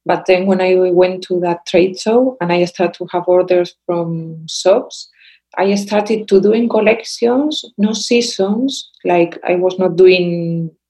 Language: English